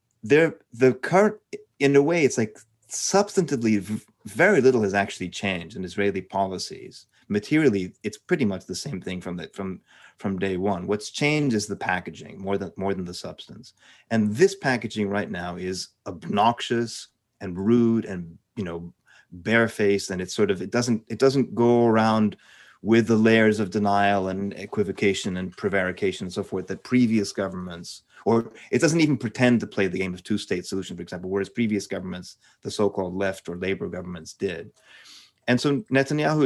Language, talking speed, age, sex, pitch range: English, 175 wpm, 30-49, male, 95-120 Hz